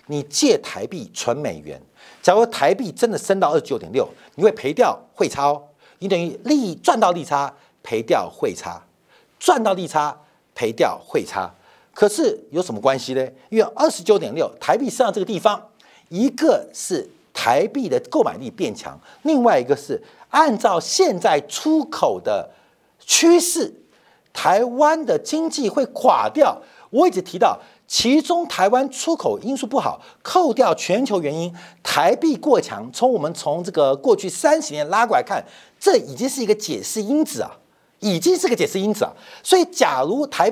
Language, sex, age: Chinese, male, 50-69